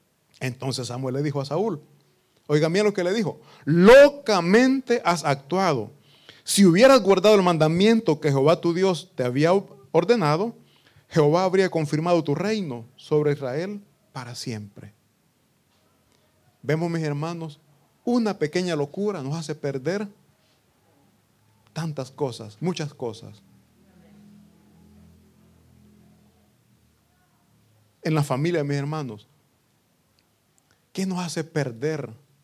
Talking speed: 110 wpm